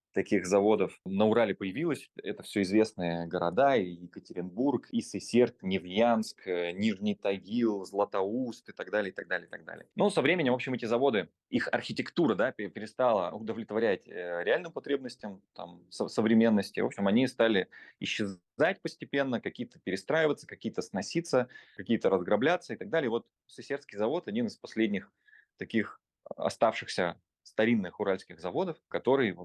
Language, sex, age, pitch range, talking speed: Russian, male, 20-39, 100-140 Hz, 130 wpm